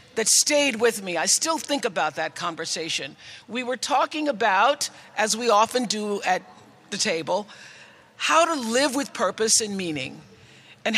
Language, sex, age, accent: English, female, 50-69, American